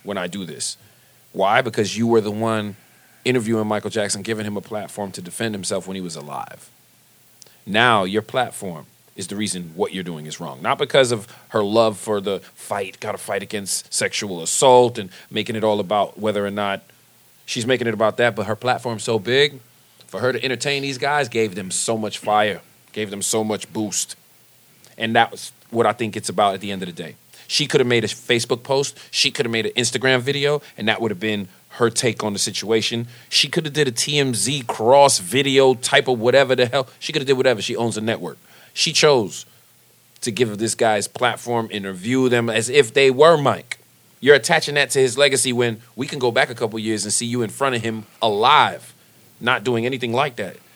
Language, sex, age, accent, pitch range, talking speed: English, male, 40-59, American, 105-125 Hz, 220 wpm